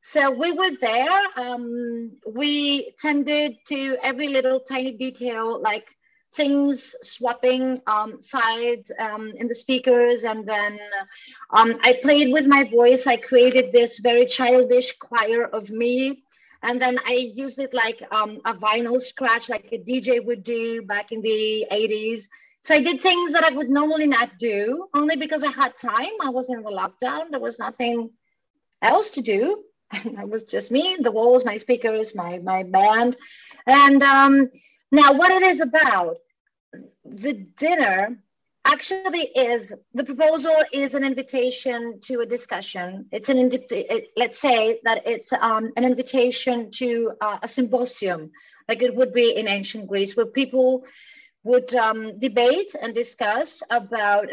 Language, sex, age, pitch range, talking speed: English, female, 30-49, 230-275 Hz, 155 wpm